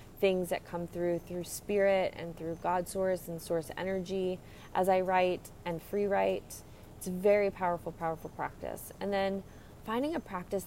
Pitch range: 165-190 Hz